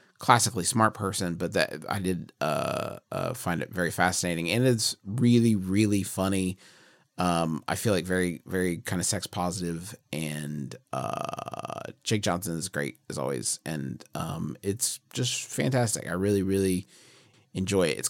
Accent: American